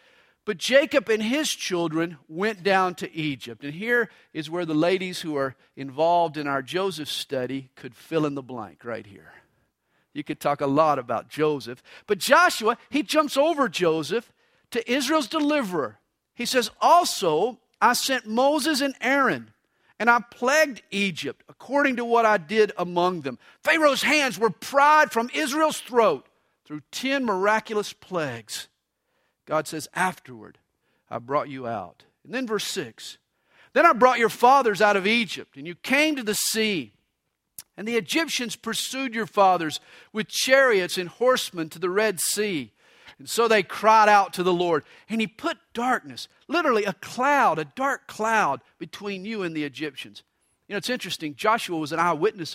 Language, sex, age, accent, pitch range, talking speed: English, male, 50-69, American, 165-250 Hz, 165 wpm